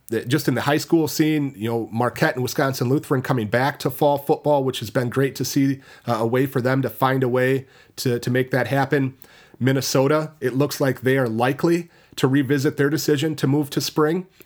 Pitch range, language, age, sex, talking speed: 115-145 Hz, English, 30-49, male, 215 wpm